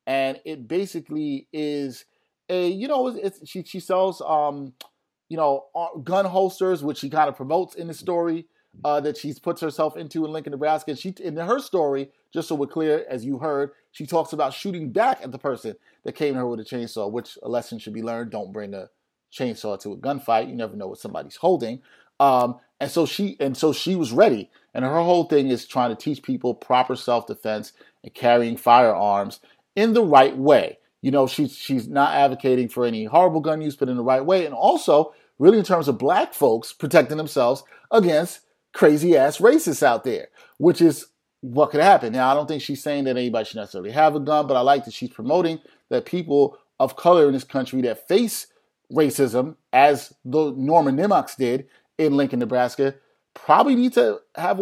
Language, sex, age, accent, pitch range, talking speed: English, male, 30-49, American, 130-170 Hz, 200 wpm